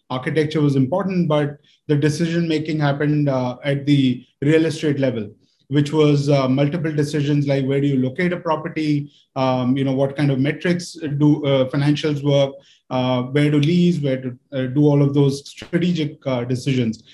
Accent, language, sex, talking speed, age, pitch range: Indian, English, male, 175 wpm, 30-49, 140-155 Hz